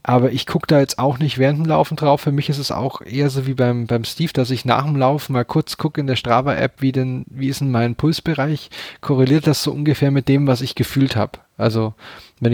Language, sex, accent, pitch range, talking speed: German, male, German, 110-135 Hz, 250 wpm